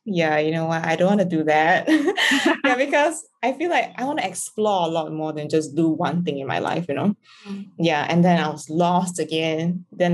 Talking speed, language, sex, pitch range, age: 235 wpm, English, female, 155-200 Hz, 20-39